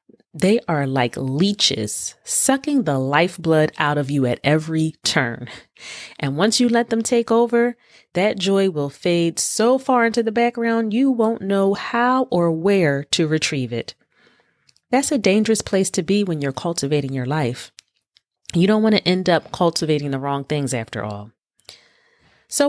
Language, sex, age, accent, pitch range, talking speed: English, female, 30-49, American, 145-225 Hz, 165 wpm